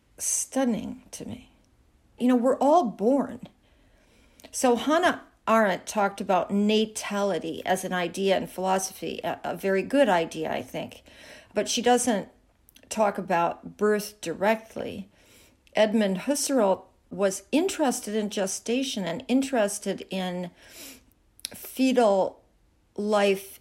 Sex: female